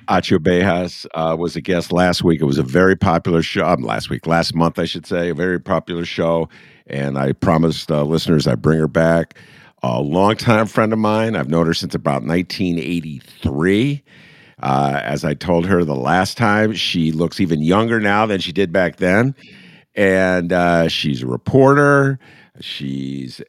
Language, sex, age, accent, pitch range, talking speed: English, male, 50-69, American, 80-115 Hz, 175 wpm